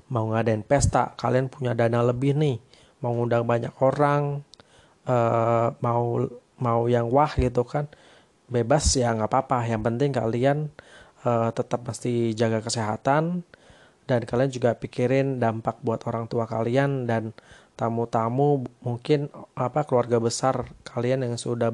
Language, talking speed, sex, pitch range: Indonesian, 130 wpm, male, 115-135 Hz